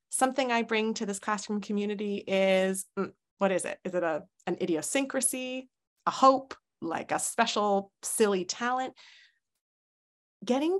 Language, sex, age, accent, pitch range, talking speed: English, female, 30-49, American, 165-205 Hz, 140 wpm